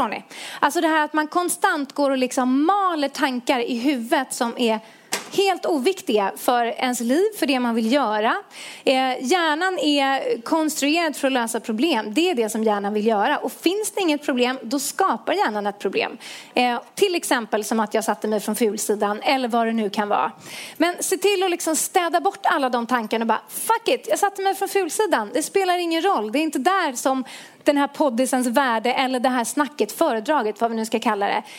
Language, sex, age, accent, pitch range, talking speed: English, female, 30-49, Swedish, 240-330 Hz, 205 wpm